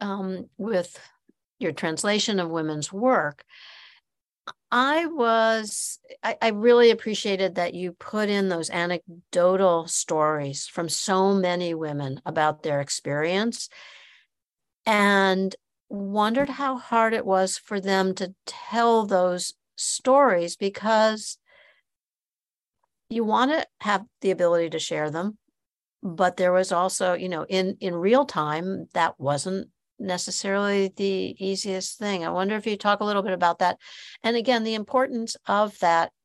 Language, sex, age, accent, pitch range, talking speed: English, female, 60-79, American, 165-210 Hz, 135 wpm